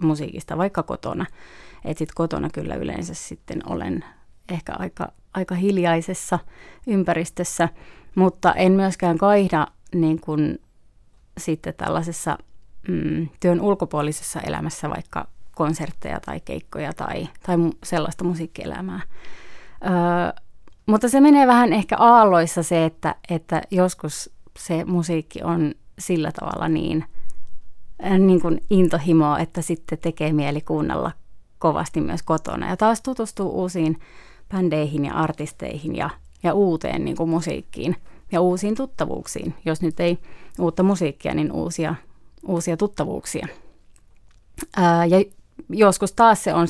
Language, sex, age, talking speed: Finnish, female, 30-49, 120 wpm